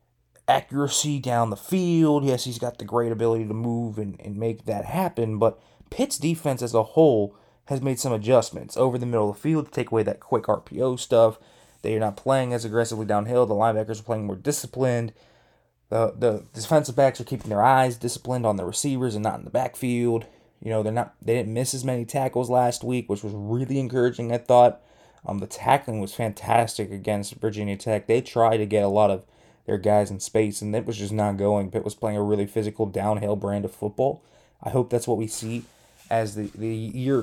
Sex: male